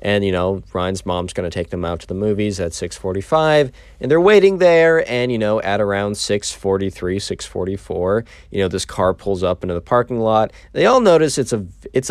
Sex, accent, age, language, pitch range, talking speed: male, American, 20-39, English, 95-130 Hz, 205 wpm